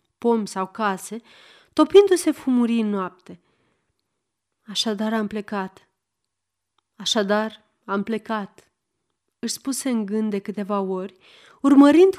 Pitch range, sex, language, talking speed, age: 200-270 Hz, female, Romanian, 100 wpm, 30-49